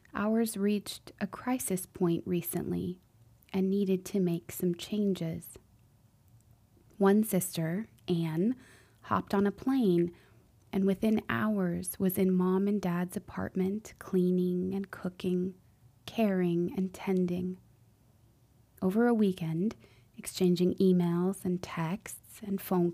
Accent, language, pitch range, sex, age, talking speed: American, English, 165-200 Hz, female, 20-39, 110 wpm